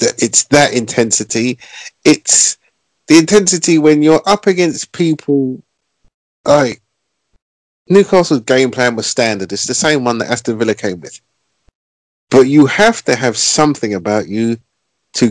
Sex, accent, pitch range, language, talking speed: male, British, 115-150 Hz, English, 135 wpm